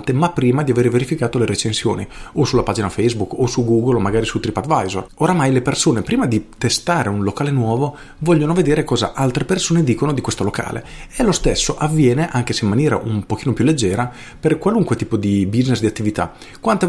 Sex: male